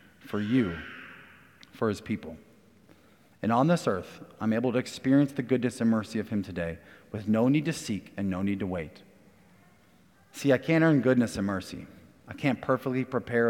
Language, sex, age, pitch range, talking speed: English, male, 30-49, 95-115 Hz, 180 wpm